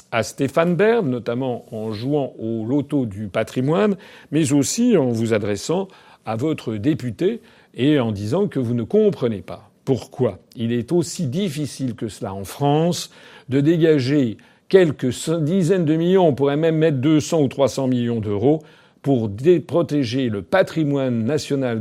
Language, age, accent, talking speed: French, 50-69, French, 150 wpm